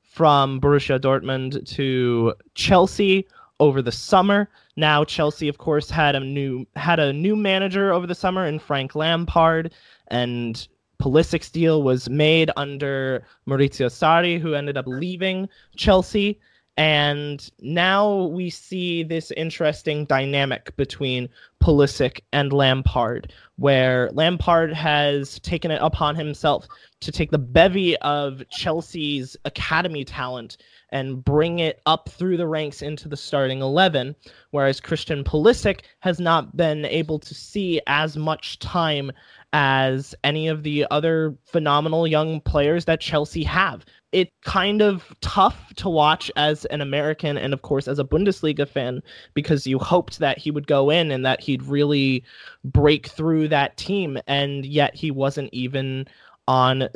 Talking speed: 145 wpm